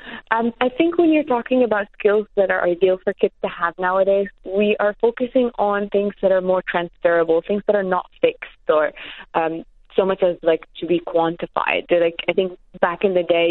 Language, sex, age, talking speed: Hindi, female, 20-39, 210 wpm